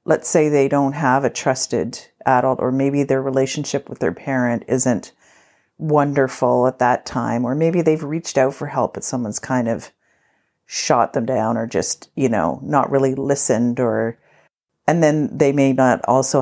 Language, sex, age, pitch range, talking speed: English, female, 40-59, 120-140 Hz, 175 wpm